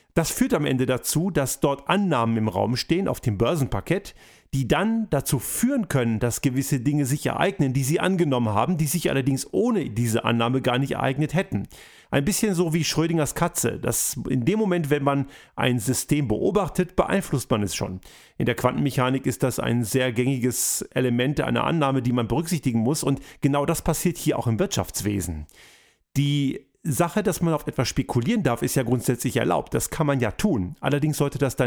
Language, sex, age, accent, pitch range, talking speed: German, male, 40-59, German, 120-155 Hz, 190 wpm